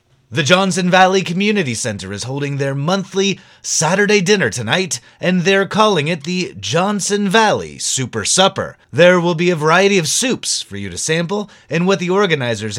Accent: American